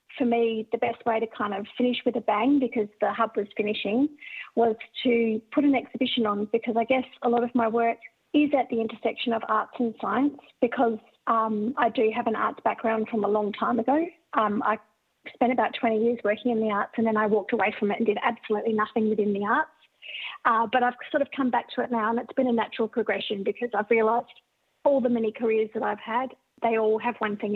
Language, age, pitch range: English, 40-59, 215-245 Hz